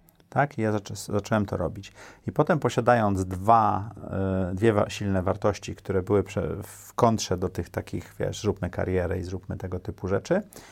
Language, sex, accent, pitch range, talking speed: Polish, male, native, 95-110 Hz, 155 wpm